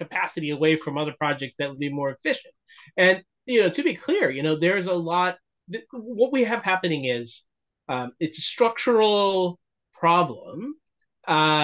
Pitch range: 155-205 Hz